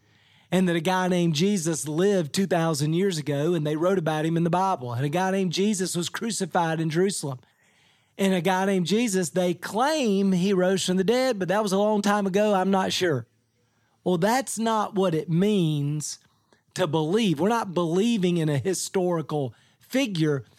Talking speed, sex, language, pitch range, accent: 185 wpm, male, English, 155-195 Hz, American